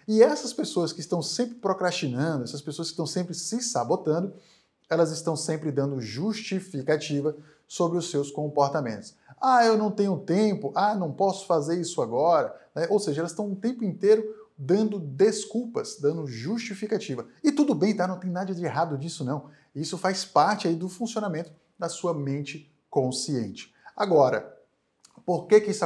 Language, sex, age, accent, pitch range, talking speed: Portuguese, male, 20-39, Brazilian, 140-190 Hz, 165 wpm